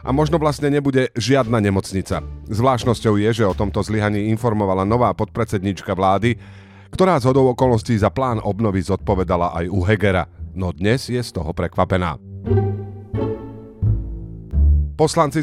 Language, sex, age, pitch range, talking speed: Slovak, male, 40-59, 95-120 Hz, 130 wpm